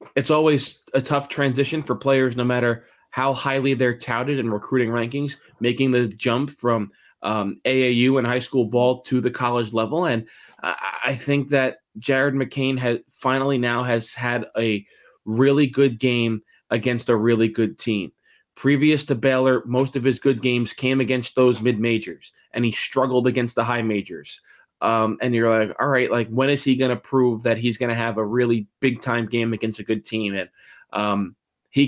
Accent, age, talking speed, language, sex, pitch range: American, 20-39, 185 wpm, English, male, 115-130 Hz